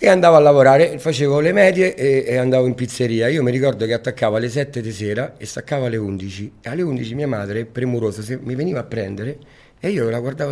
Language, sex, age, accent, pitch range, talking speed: Italian, male, 40-59, native, 115-150 Hz, 220 wpm